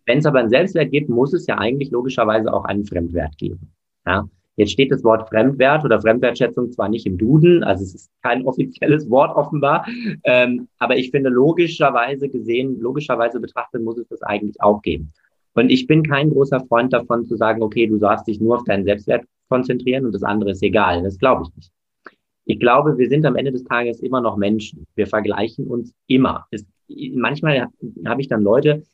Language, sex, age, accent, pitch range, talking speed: German, male, 30-49, German, 105-130 Hz, 195 wpm